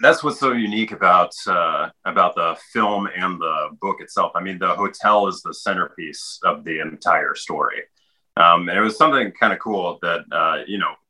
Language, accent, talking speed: English, American, 195 wpm